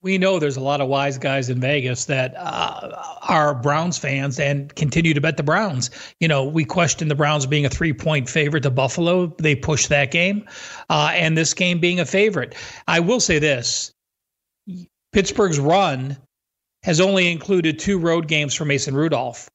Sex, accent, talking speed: male, American, 180 wpm